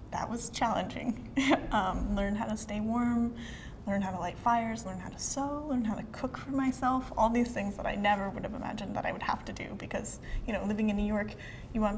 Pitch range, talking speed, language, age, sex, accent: 190-230 Hz, 240 wpm, English, 10-29, female, American